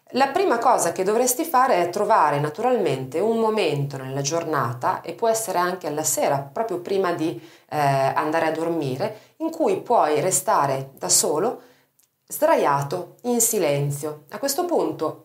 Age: 40-59